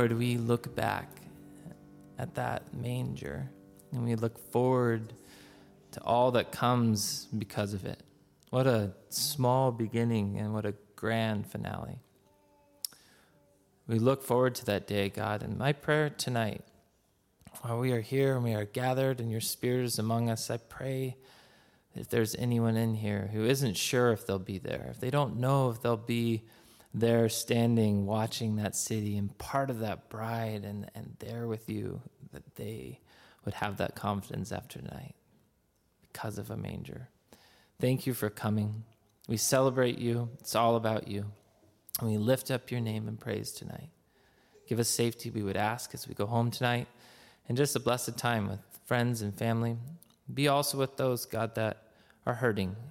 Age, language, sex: 20-39, English, male